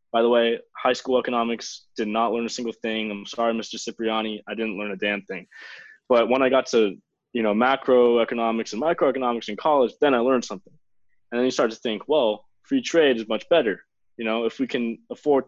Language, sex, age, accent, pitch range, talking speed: English, male, 20-39, American, 110-135 Hz, 215 wpm